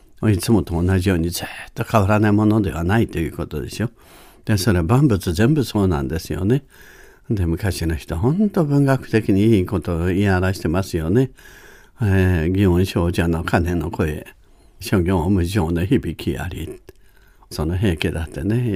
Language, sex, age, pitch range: Japanese, male, 60-79, 90-110 Hz